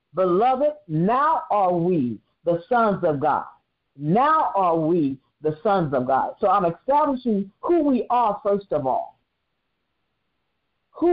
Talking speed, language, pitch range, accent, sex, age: 135 wpm, English, 180-270 Hz, American, female, 50-69